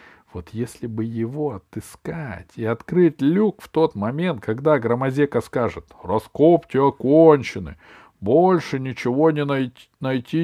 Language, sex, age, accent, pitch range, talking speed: Russian, male, 50-69, native, 100-140 Hz, 110 wpm